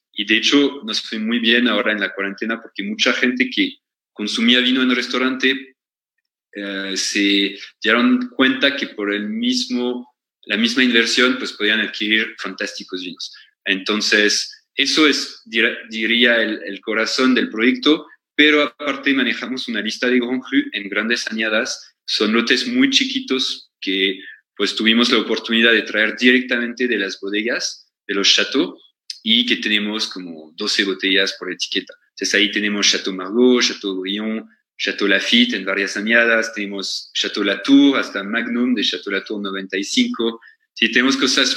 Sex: male